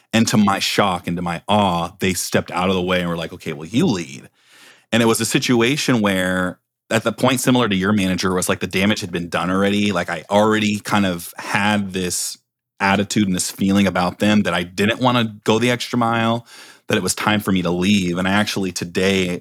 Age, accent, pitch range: 30-49, American, 95-120 Hz